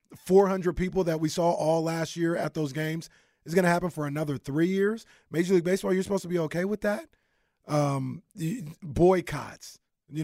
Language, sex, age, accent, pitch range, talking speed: English, male, 30-49, American, 145-195 Hz, 190 wpm